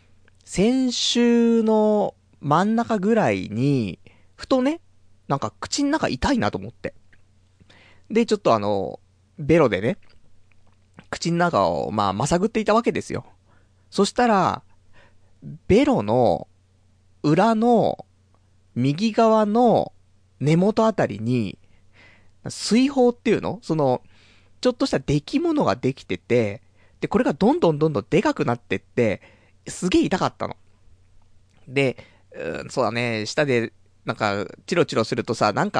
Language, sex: Japanese, male